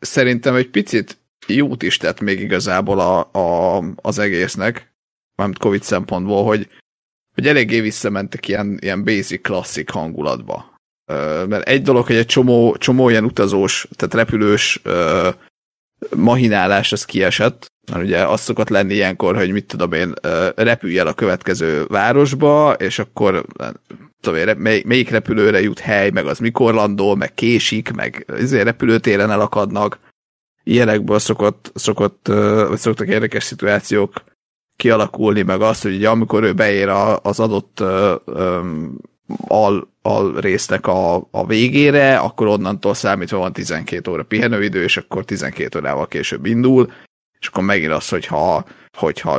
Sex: male